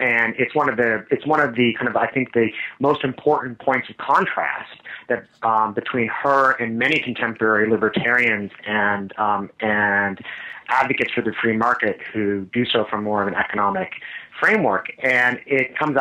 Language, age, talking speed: English, 30-49, 175 wpm